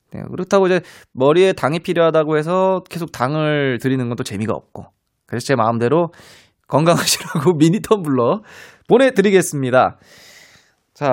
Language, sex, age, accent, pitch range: Korean, male, 20-39, native, 130-195 Hz